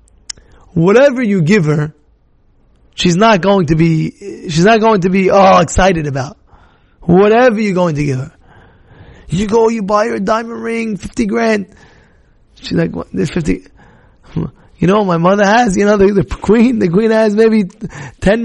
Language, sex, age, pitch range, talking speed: English, male, 20-39, 200-265 Hz, 170 wpm